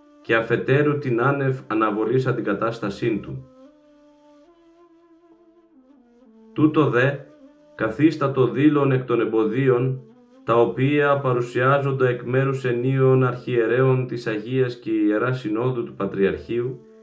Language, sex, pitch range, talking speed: Greek, male, 110-155 Hz, 100 wpm